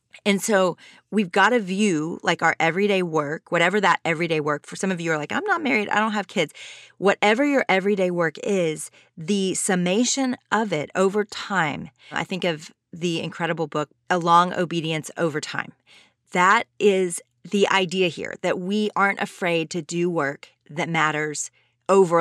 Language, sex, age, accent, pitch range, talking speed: English, female, 30-49, American, 160-210 Hz, 175 wpm